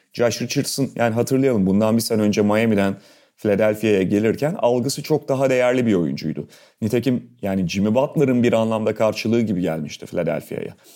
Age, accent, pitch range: 30-49, native, 100-125 Hz